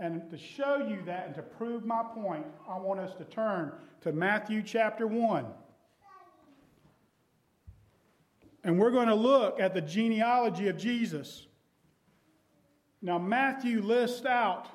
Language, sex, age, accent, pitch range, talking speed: English, male, 40-59, American, 210-280 Hz, 135 wpm